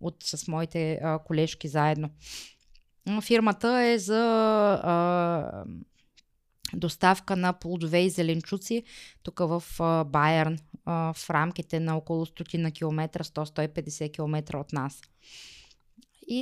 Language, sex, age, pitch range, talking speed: Bulgarian, female, 20-39, 175-210 Hz, 110 wpm